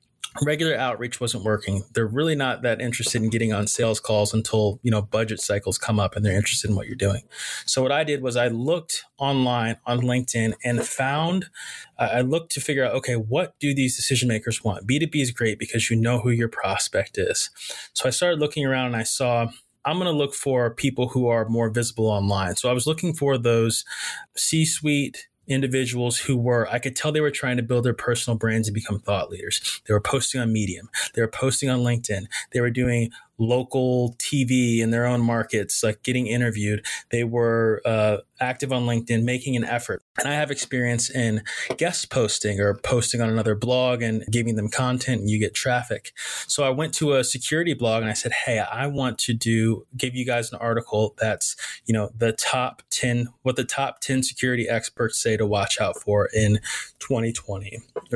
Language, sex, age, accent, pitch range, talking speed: English, male, 20-39, American, 115-130 Hz, 205 wpm